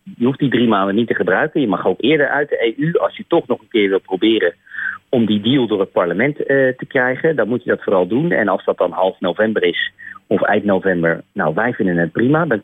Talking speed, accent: 255 wpm, Dutch